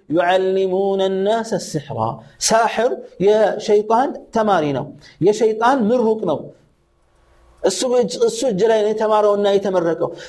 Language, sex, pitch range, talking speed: Amharic, male, 190-235 Hz, 95 wpm